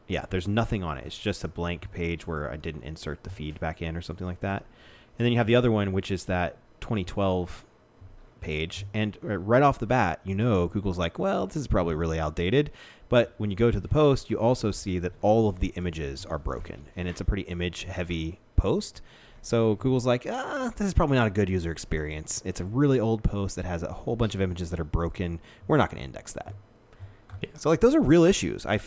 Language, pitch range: English, 85-115 Hz